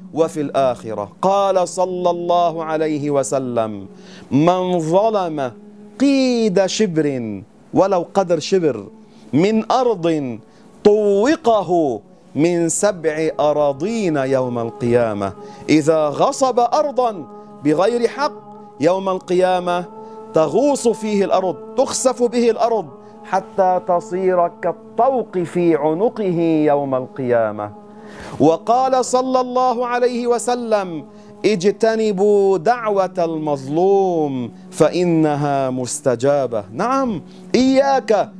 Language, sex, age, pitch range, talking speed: Arabic, male, 40-59, 160-220 Hz, 85 wpm